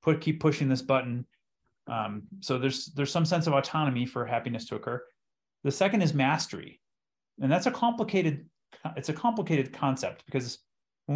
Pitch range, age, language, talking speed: 120-155 Hz, 30-49, English, 165 wpm